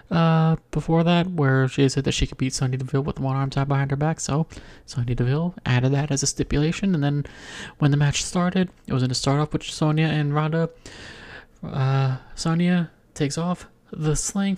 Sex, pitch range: male, 130-160 Hz